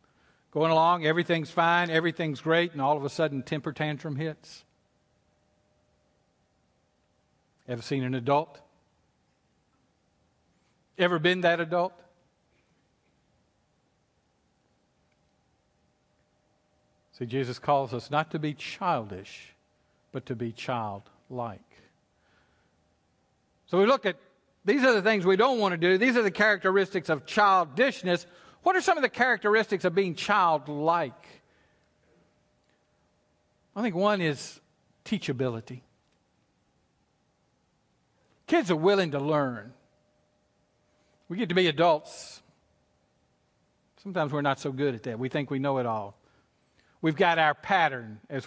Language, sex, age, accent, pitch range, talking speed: English, male, 50-69, American, 125-175 Hz, 120 wpm